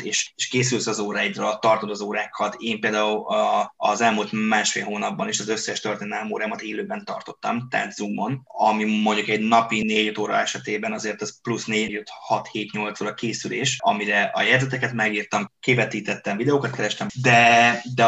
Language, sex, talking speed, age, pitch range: Hungarian, male, 155 wpm, 20-39, 110-130 Hz